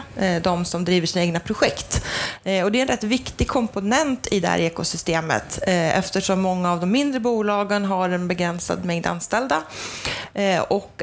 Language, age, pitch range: Swedish, 30-49, 170-205 Hz